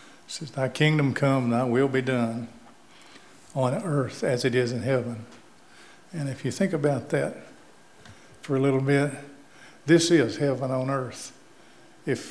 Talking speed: 155 wpm